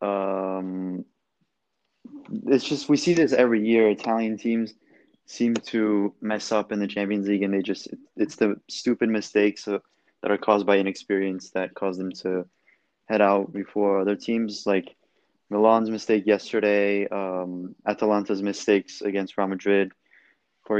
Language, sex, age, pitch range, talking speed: English, male, 20-39, 95-110 Hz, 145 wpm